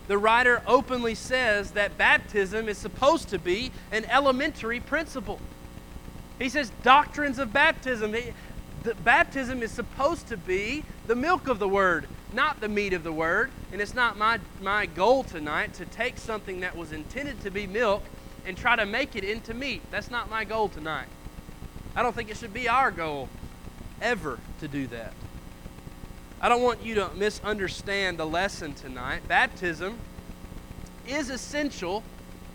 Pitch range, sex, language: 180-245 Hz, male, English